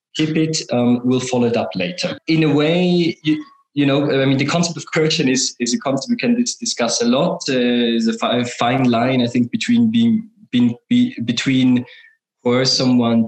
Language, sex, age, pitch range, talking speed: English, male, 20-39, 120-180 Hz, 190 wpm